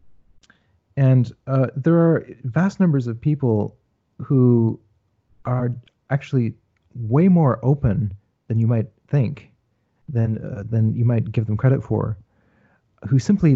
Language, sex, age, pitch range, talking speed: English, male, 30-49, 105-130 Hz, 130 wpm